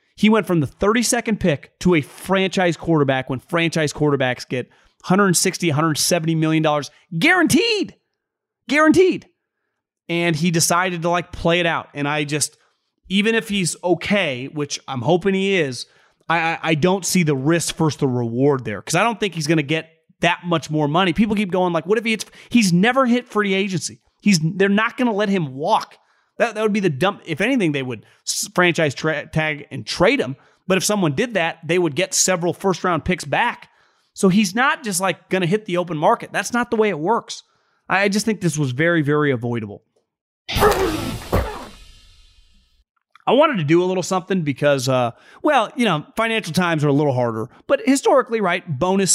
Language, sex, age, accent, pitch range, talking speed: English, male, 30-49, American, 150-200 Hz, 190 wpm